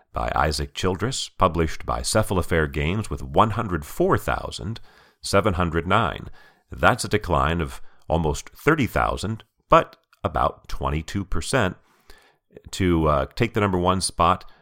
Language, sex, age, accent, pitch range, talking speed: English, male, 40-59, American, 75-105 Hz, 105 wpm